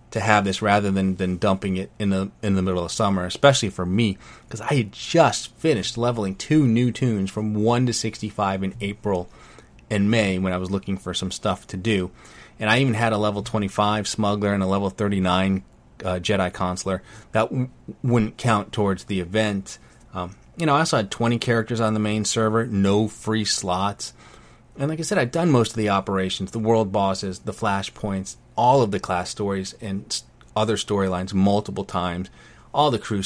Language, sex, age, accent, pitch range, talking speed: English, male, 30-49, American, 95-115 Hz, 200 wpm